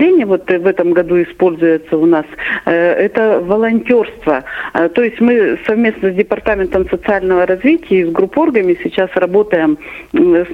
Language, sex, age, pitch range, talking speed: Russian, female, 40-59, 175-230 Hz, 130 wpm